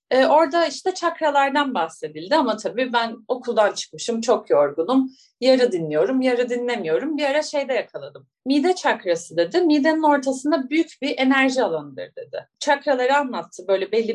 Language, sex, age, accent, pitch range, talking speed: Turkish, female, 30-49, native, 220-305 Hz, 140 wpm